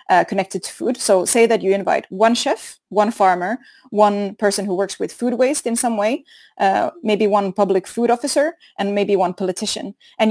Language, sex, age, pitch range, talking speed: English, female, 20-39, 190-235 Hz, 200 wpm